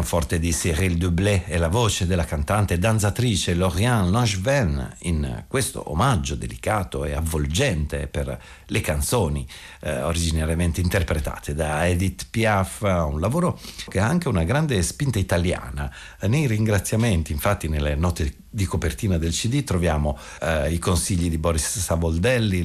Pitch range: 80-110 Hz